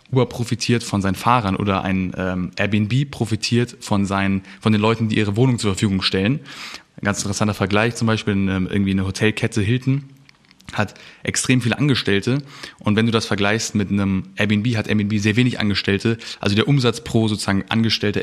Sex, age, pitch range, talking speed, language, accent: male, 20-39, 105-125 Hz, 180 wpm, German, German